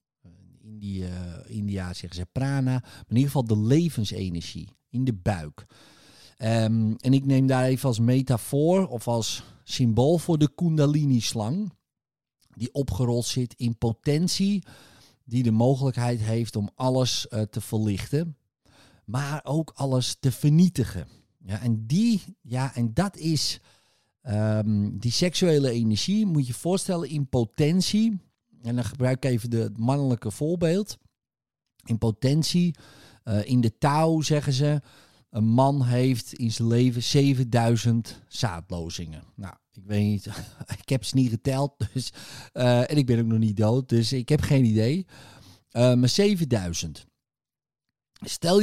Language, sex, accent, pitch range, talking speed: Dutch, male, Dutch, 110-140 Hz, 140 wpm